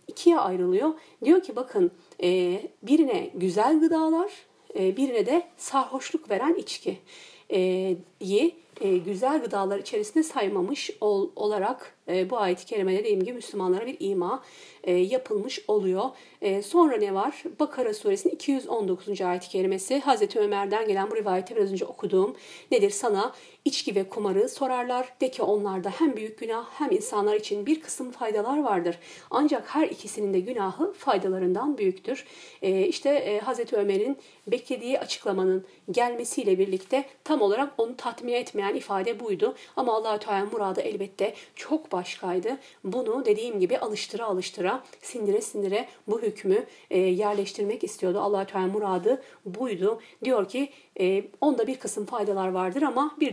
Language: Turkish